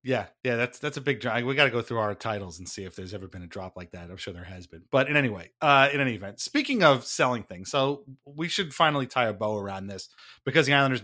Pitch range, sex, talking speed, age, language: 120-165 Hz, male, 285 wpm, 30-49, English